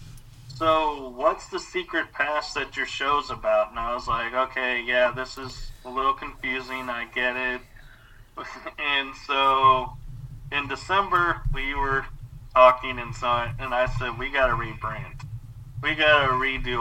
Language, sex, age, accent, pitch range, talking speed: English, male, 30-49, American, 120-135 Hz, 145 wpm